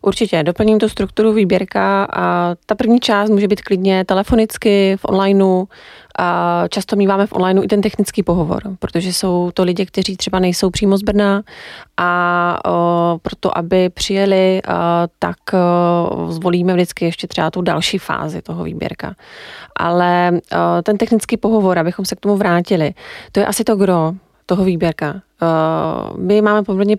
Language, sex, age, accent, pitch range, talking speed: Czech, female, 30-49, native, 175-200 Hz, 145 wpm